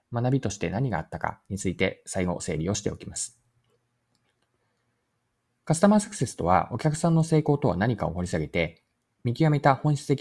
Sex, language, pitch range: male, Japanese, 100-150 Hz